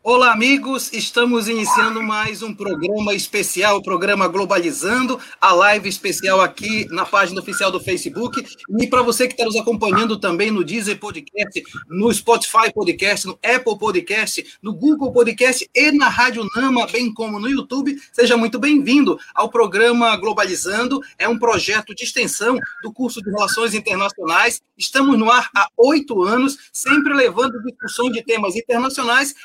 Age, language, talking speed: 30-49, Portuguese, 155 wpm